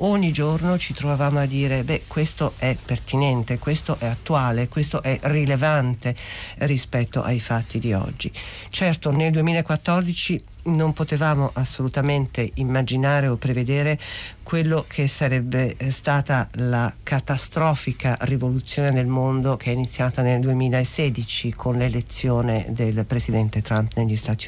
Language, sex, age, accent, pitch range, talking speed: Italian, female, 50-69, native, 120-150 Hz, 125 wpm